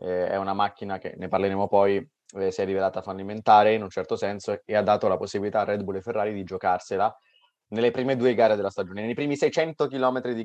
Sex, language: male, Italian